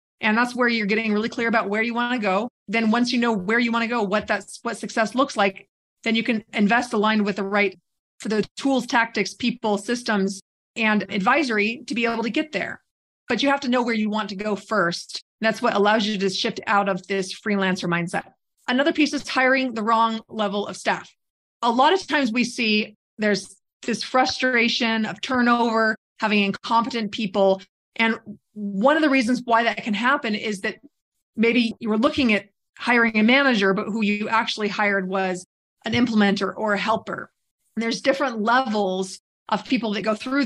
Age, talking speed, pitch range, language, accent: 30-49, 200 wpm, 205-240 Hz, English, American